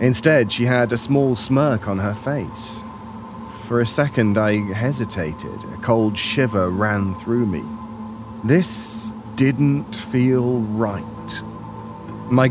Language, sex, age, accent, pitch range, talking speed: English, male, 30-49, British, 110-125 Hz, 120 wpm